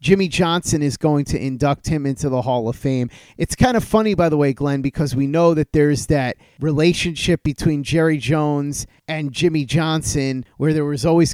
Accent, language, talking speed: American, English, 195 wpm